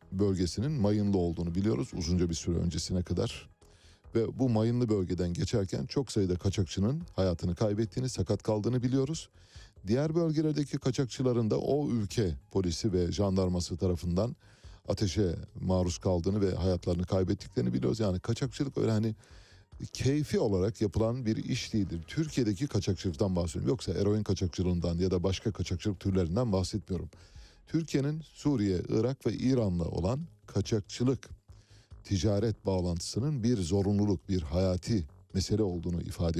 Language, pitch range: Turkish, 90-115 Hz